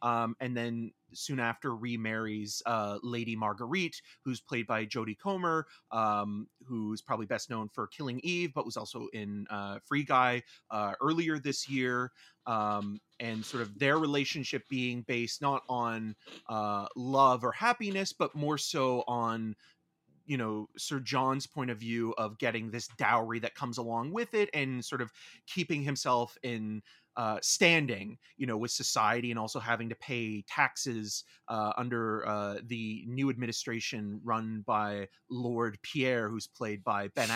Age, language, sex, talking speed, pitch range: 30-49, English, male, 160 wpm, 110-135 Hz